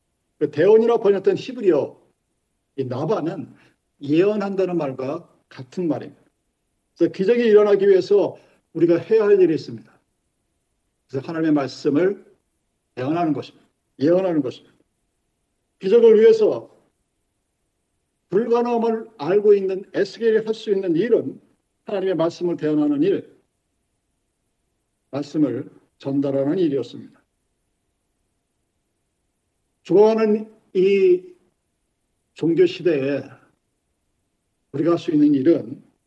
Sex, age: male, 50-69